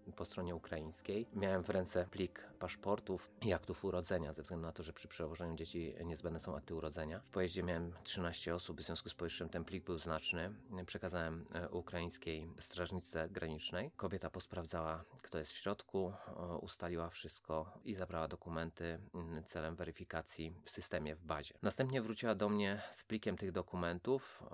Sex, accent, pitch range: male, native, 80-95 Hz